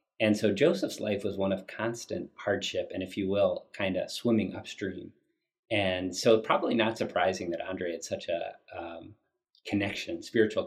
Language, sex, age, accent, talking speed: English, male, 30-49, American, 170 wpm